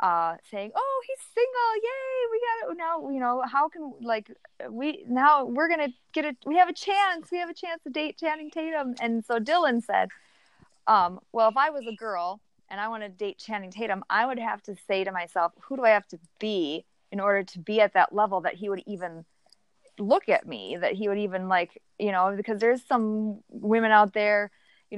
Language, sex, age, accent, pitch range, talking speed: English, female, 20-39, American, 195-265 Hz, 225 wpm